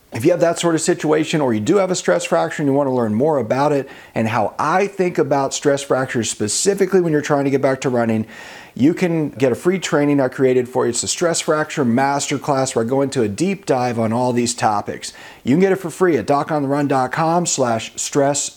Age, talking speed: 40-59, 240 wpm